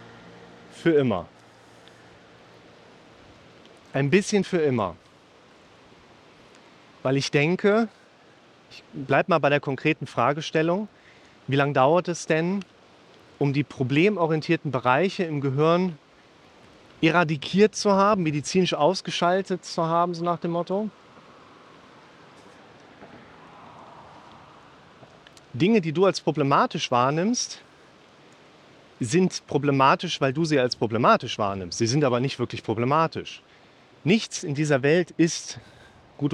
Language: German